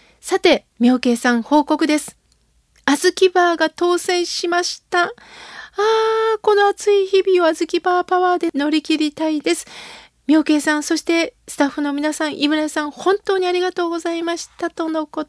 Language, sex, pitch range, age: Japanese, female, 255-345 Hz, 40-59